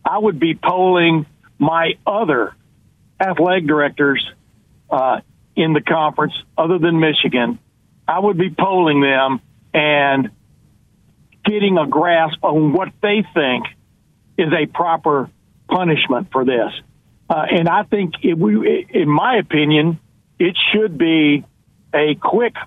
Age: 60-79